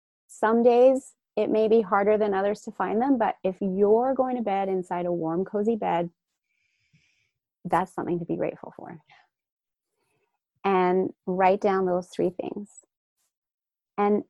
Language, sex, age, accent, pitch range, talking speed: English, female, 30-49, American, 180-210 Hz, 145 wpm